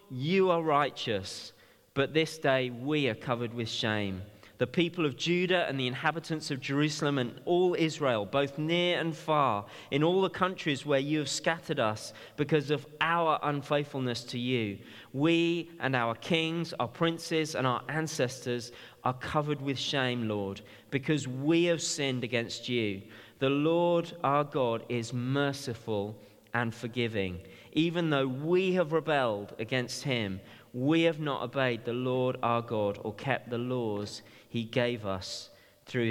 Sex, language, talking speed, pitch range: male, English, 155 wpm, 120-165 Hz